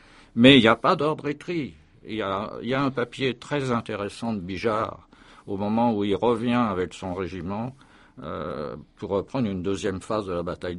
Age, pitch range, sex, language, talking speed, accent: 60-79, 100-130 Hz, male, French, 200 wpm, French